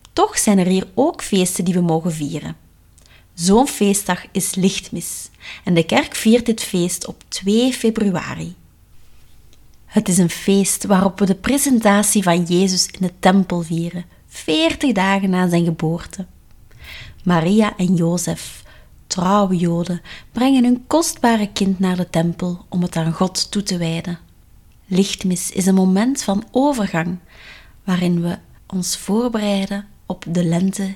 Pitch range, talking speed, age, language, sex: 175-210 Hz, 145 wpm, 30-49, Dutch, female